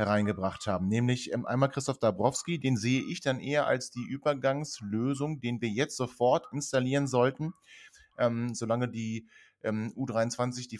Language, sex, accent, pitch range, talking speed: German, male, German, 105-135 Hz, 150 wpm